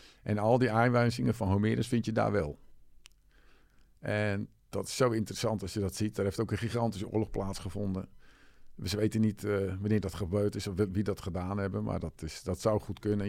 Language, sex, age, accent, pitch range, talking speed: English, male, 50-69, Dutch, 95-115 Hz, 210 wpm